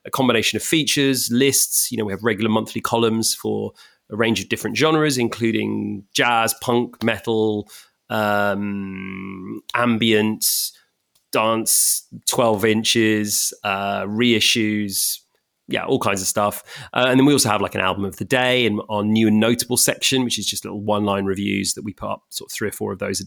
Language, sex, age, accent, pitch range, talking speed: English, male, 30-49, British, 105-125 Hz, 180 wpm